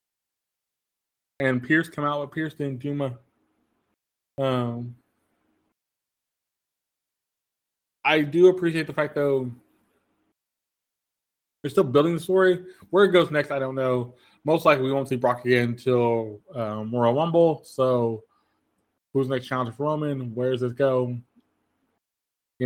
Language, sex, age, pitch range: English, male, 20-39, 125-150 Hz